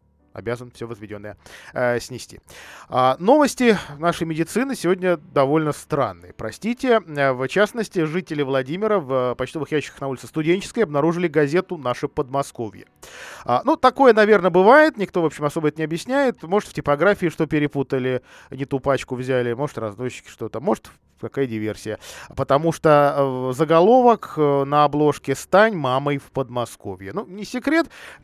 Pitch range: 130-180 Hz